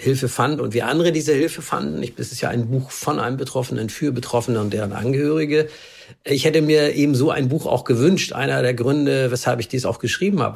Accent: German